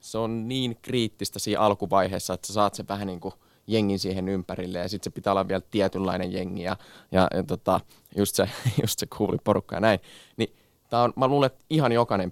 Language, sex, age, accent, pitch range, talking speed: Finnish, male, 20-39, native, 95-110 Hz, 210 wpm